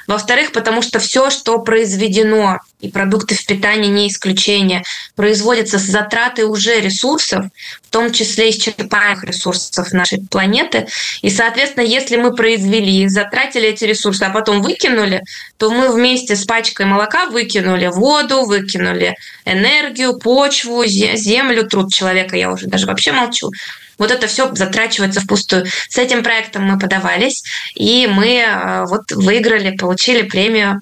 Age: 20-39